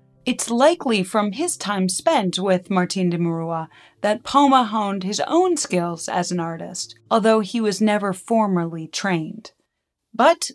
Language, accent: English, American